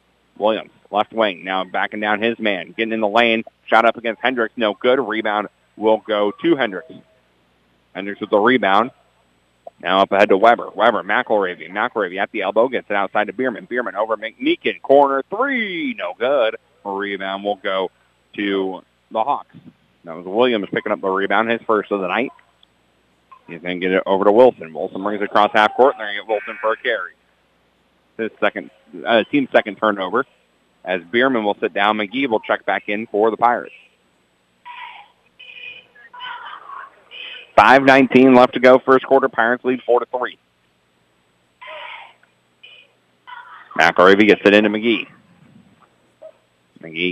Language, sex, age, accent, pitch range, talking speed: English, male, 40-59, American, 90-115 Hz, 155 wpm